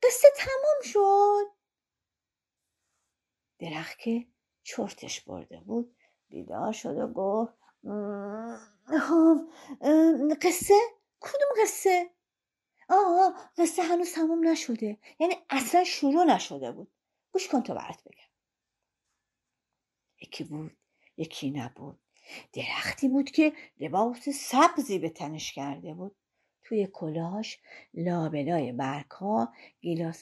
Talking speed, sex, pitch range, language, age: 100 wpm, female, 225-330 Hz, Persian, 50-69